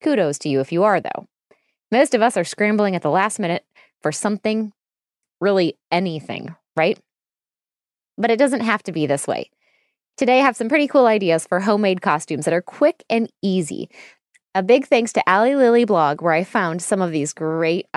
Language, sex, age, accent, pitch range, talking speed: English, female, 20-39, American, 180-240 Hz, 195 wpm